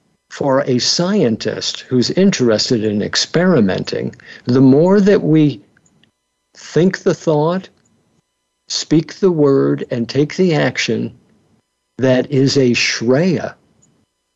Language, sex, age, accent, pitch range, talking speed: English, male, 60-79, American, 115-150 Hz, 105 wpm